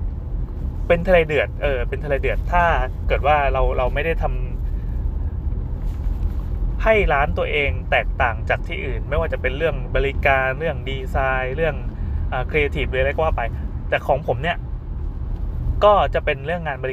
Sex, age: male, 20-39